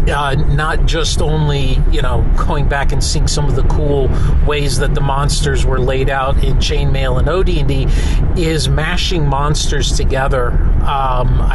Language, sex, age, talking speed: English, male, 40-59, 165 wpm